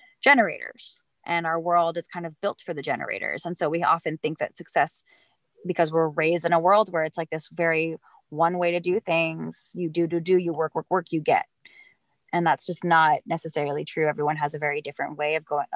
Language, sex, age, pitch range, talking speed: English, female, 20-39, 155-175 Hz, 220 wpm